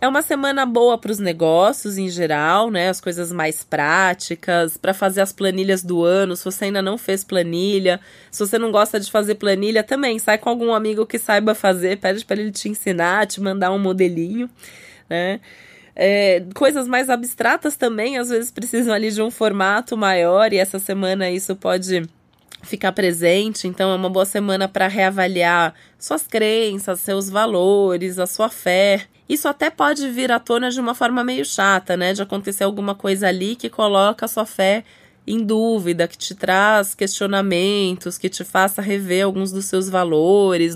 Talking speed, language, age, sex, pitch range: 175 wpm, Portuguese, 20-39, female, 185-225 Hz